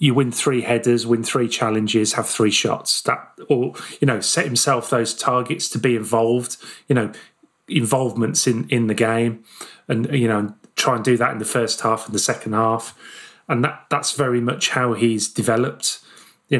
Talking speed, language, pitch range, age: 190 wpm, English, 115-140 Hz, 30-49